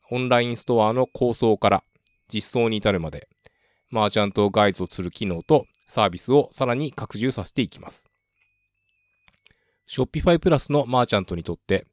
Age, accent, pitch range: 20-39, native, 100-125 Hz